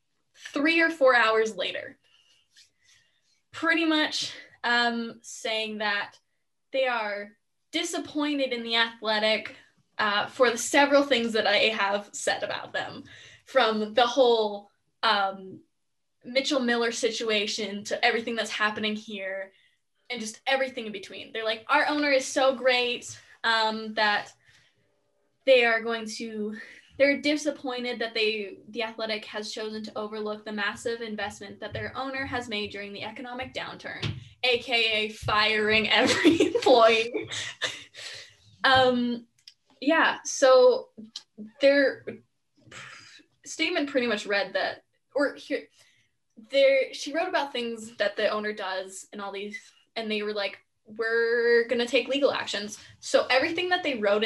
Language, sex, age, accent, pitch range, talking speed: English, female, 10-29, American, 215-265 Hz, 135 wpm